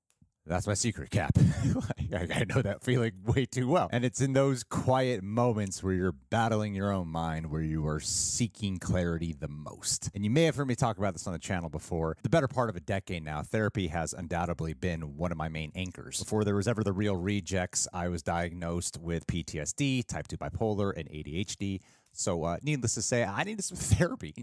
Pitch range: 90-120 Hz